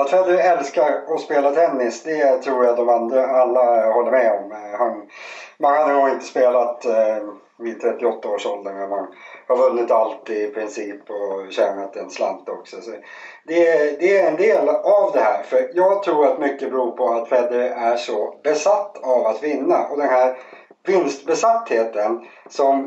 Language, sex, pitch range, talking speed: Swedish, male, 120-175 Hz, 170 wpm